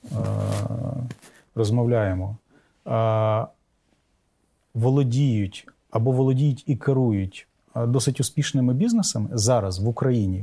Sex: male